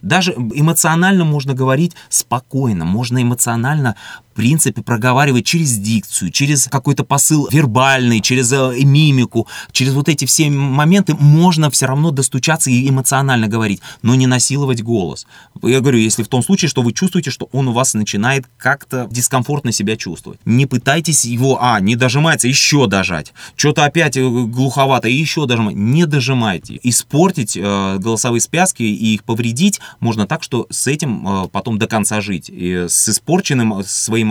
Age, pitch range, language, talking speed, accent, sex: 20-39, 115-150 Hz, Russian, 150 wpm, native, male